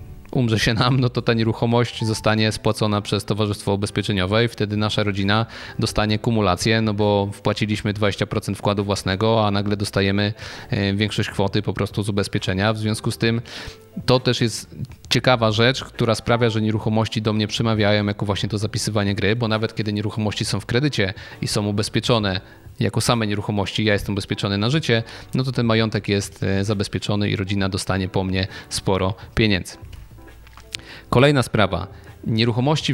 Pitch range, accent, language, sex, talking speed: 100-120 Hz, native, Polish, male, 160 wpm